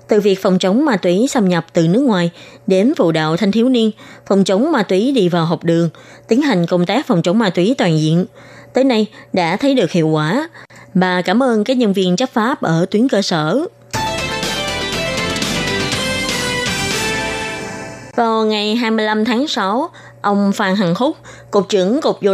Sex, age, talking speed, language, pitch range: female, 20-39, 180 wpm, Vietnamese, 175-225 Hz